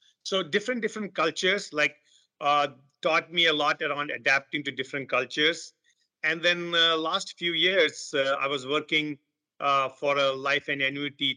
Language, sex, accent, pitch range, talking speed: English, male, Indian, 135-150 Hz, 165 wpm